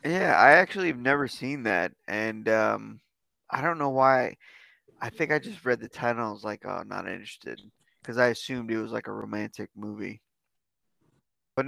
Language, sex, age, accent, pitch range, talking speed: English, male, 20-39, American, 120-155 Hz, 195 wpm